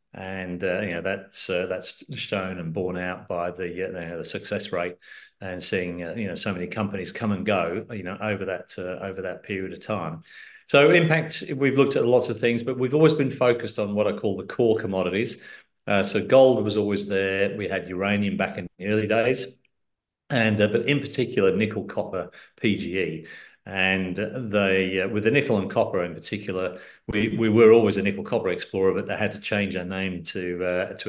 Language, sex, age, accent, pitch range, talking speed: English, male, 40-59, British, 95-115 Hz, 210 wpm